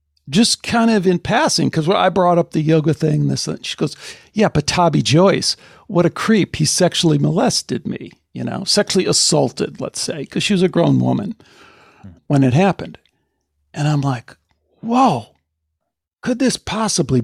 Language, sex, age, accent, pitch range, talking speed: English, male, 60-79, American, 150-215 Hz, 165 wpm